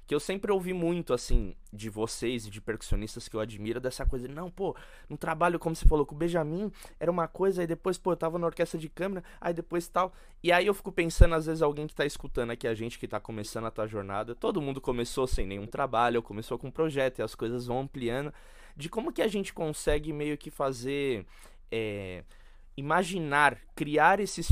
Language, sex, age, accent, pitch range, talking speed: Portuguese, male, 20-39, Brazilian, 120-170 Hz, 220 wpm